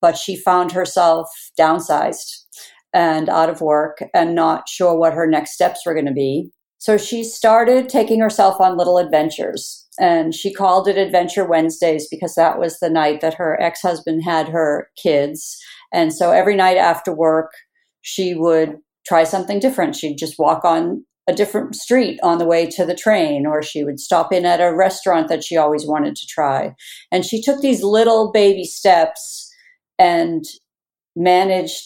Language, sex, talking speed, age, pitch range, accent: English, female, 170 wpm, 50-69, 160-215 Hz, American